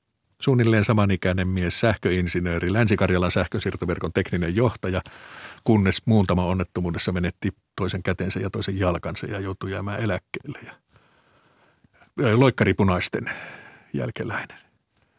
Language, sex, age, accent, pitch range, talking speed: Finnish, male, 50-69, native, 90-115 Hz, 105 wpm